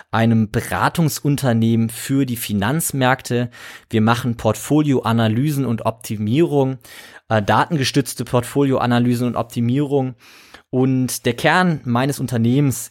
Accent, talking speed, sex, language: German, 95 wpm, male, German